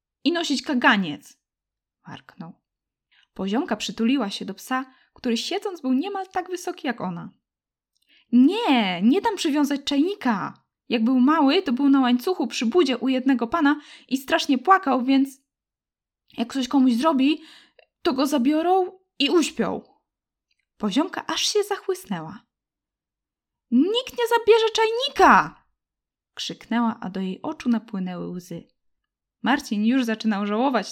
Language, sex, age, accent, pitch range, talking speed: Polish, female, 10-29, native, 220-310 Hz, 130 wpm